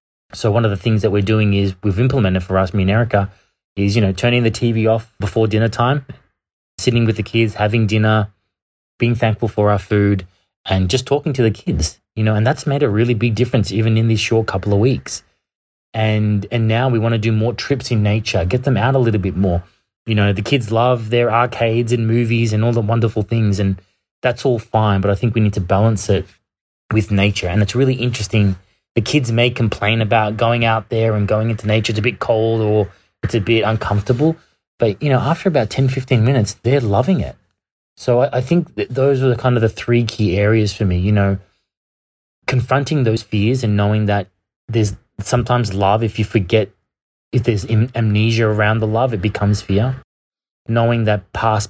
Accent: Australian